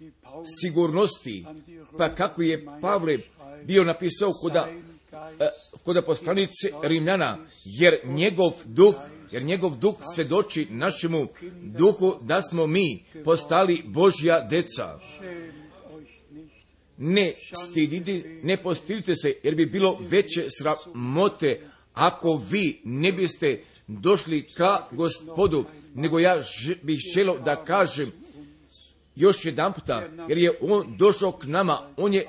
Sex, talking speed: male, 115 wpm